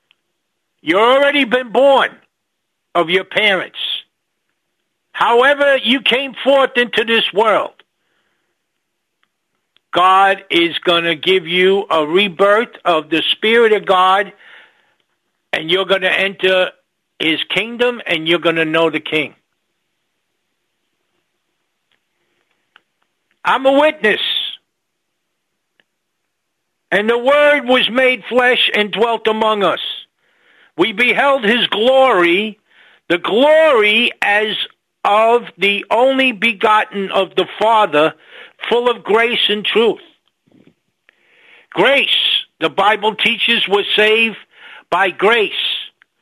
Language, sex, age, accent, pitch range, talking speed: English, male, 60-79, American, 185-240 Hz, 105 wpm